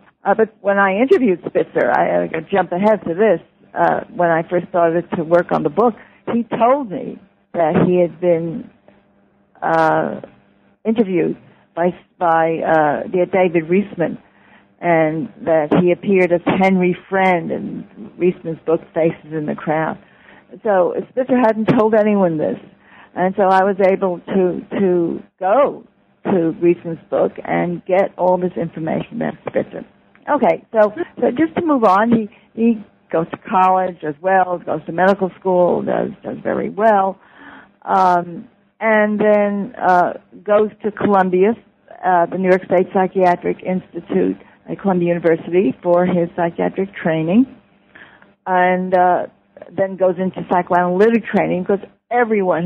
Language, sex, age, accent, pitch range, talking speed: English, female, 60-79, American, 170-210 Hz, 145 wpm